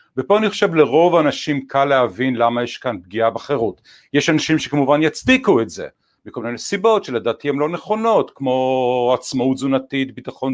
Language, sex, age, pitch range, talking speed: Hebrew, male, 50-69, 120-145 Hz, 165 wpm